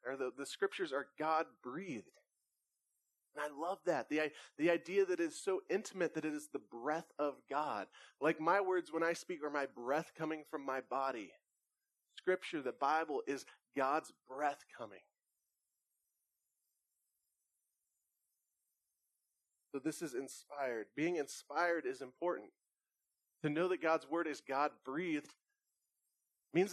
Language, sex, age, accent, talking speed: English, male, 30-49, American, 140 wpm